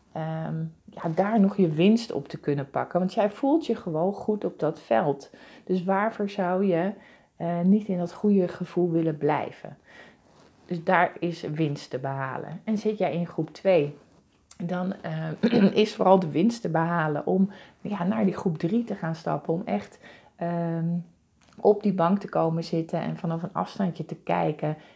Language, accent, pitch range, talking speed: Dutch, Dutch, 160-190 Hz, 170 wpm